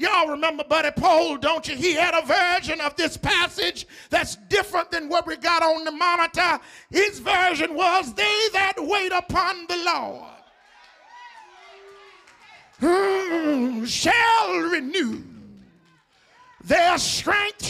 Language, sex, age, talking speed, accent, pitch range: English, male, 50-69, 120 wpm, American, 310-390 Hz